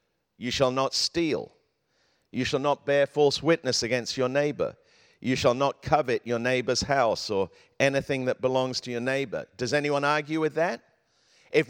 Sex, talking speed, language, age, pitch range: male, 170 wpm, English, 50-69, 135-175 Hz